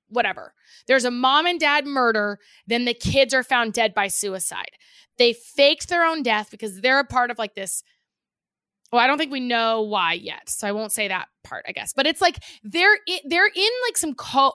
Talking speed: 220 wpm